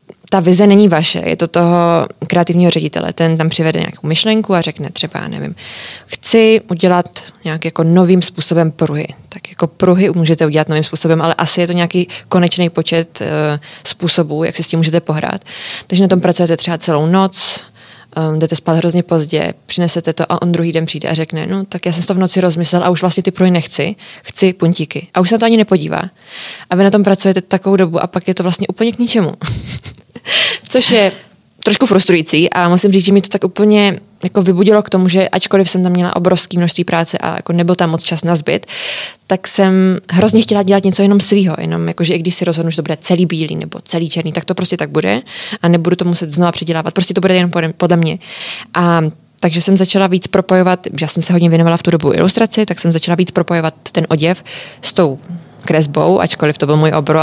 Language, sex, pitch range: Czech, female, 165-190 Hz